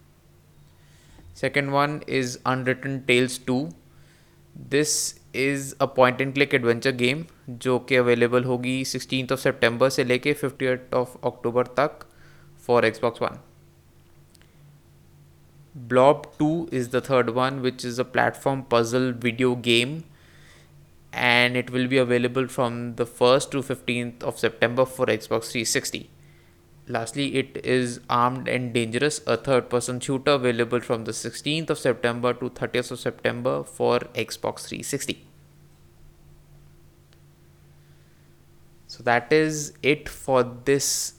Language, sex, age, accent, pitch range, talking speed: Hindi, male, 20-39, native, 115-135 Hz, 125 wpm